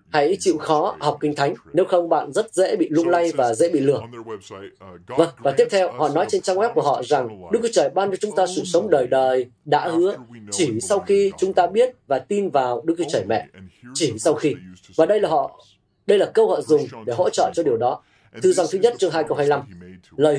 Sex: male